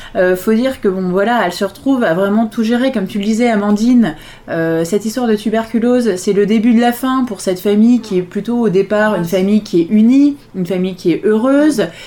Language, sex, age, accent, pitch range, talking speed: French, female, 20-39, French, 185-235 Hz, 235 wpm